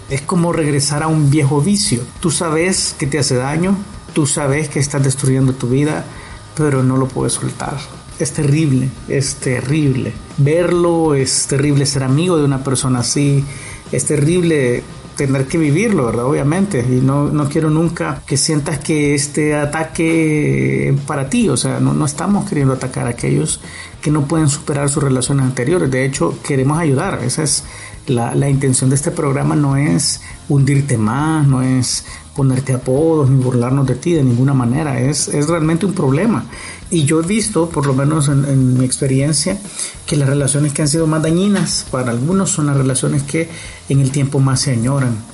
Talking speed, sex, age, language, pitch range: 180 wpm, male, 50-69, Spanish, 130-155 Hz